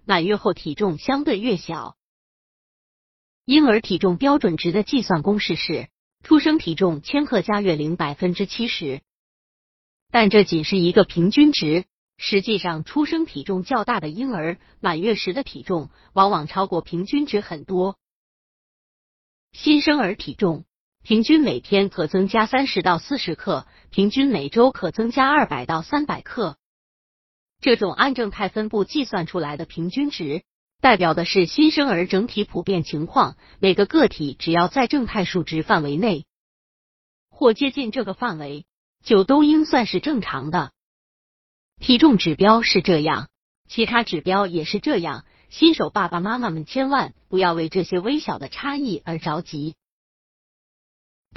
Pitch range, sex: 175-245 Hz, female